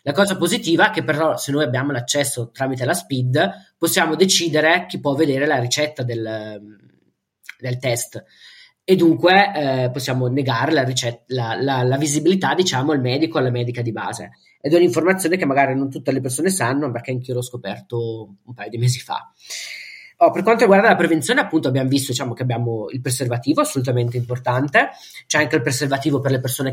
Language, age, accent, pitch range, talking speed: Italian, 20-39, native, 125-165 Hz, 190 wpm